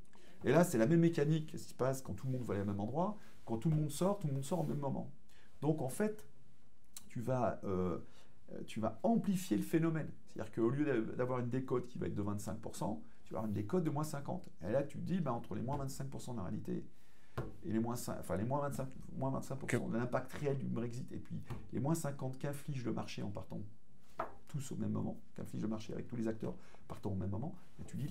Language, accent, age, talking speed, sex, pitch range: French, French, 40-59, 245 wpm, male, 105-150 Hz